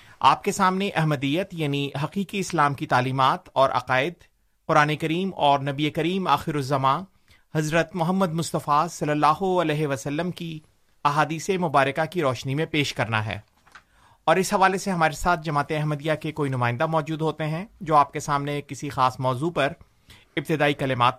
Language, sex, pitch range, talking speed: Urdu, male, 140-175 Hz, 165 wpm